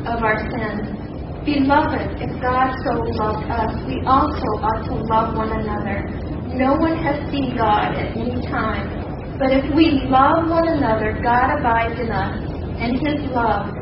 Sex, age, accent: female, 40-59, American